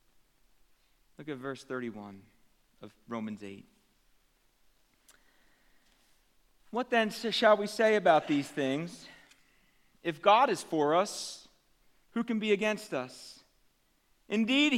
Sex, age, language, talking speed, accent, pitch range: male, 40-59, English, 105 wpm, American, 200-265 Hz